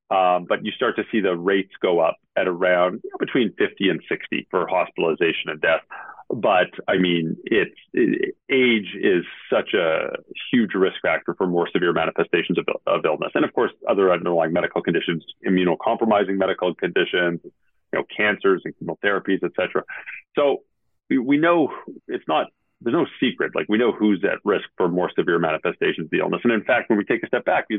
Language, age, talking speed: English, 40-59, 195 wpm